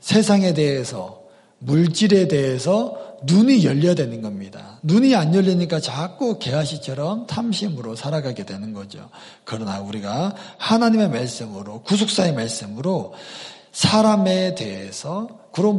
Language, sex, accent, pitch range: Korean, male, native, 135-215 Hz